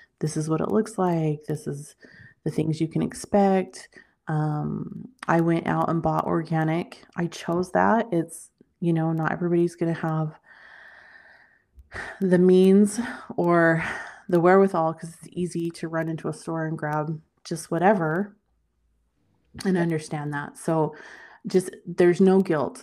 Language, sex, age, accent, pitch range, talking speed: English, female, 20-39, American, 155-185 Hz, 145 wpm